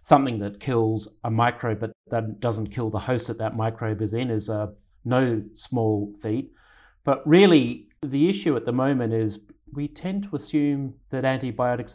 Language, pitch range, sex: English, 105-125 Hz, male